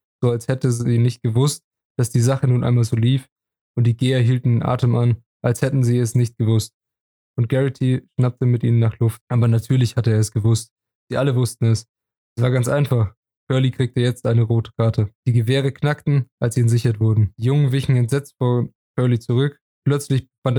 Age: 20-39